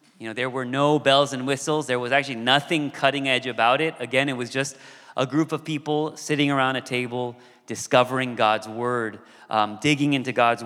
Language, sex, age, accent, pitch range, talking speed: English, male, 30-49, American, 125-150 Hz, 195 wpm